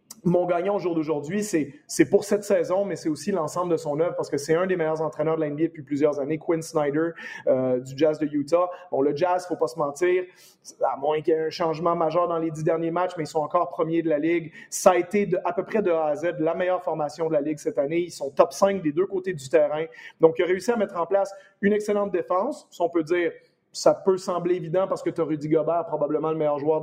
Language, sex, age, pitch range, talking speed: French, male, 30-49, 155-185 Hz, 270 wpm